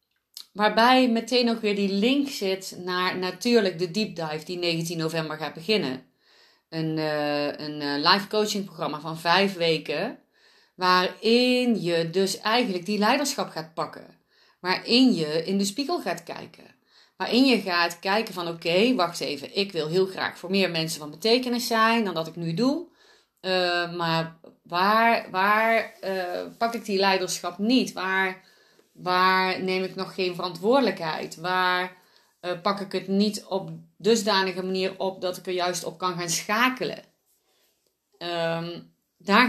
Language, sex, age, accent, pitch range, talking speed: Dutch, female, 30-49, Dutch, 170-210 Hz, 155 wpm